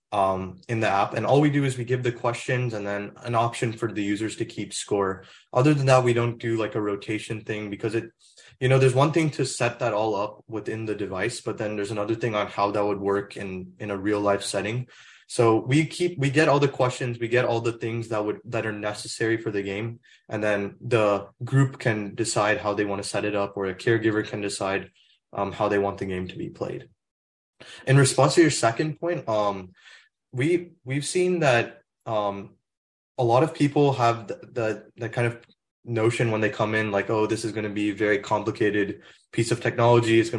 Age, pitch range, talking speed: 20-39, 105-120 Hz, 230 wpm